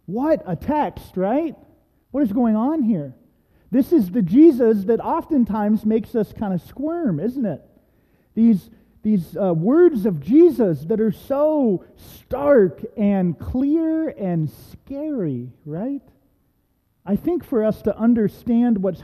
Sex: male